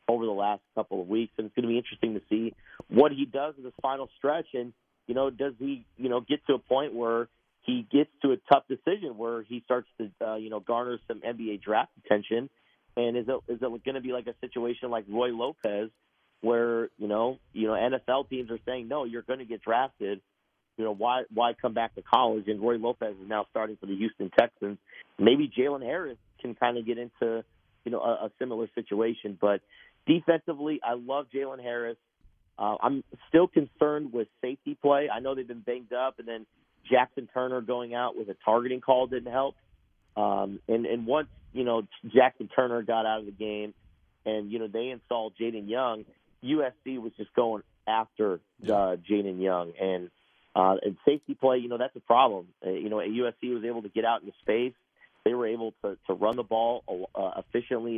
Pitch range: 110-130 Hz